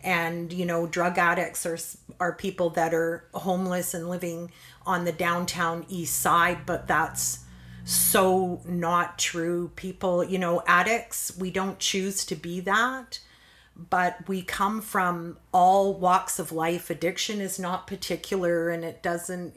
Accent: American